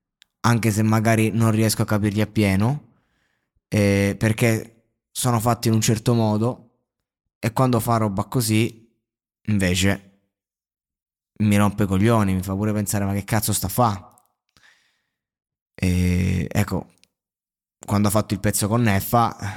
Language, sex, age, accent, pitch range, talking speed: Italian, male, 20-39, native, 95-115 Hz, 135 wpm